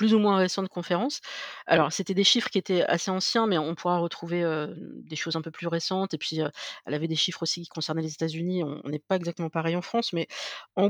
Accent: French